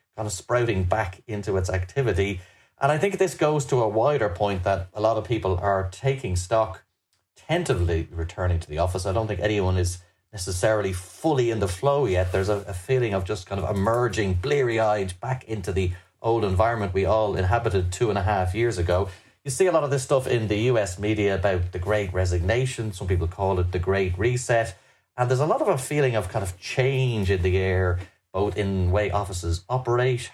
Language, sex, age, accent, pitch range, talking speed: English, male, 30-49, Irish, 95-110 Hz, 210 wpm